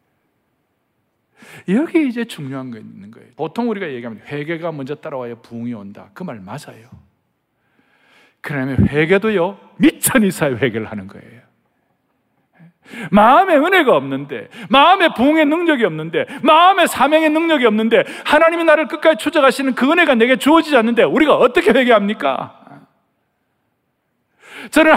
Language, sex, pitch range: Korean, male, 210-310 Hz